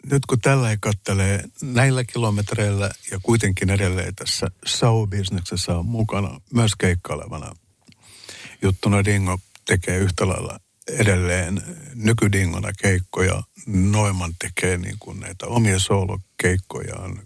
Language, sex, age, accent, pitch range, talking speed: Finnish, male, 60-79, native, 95-115 Hz, 110 wpm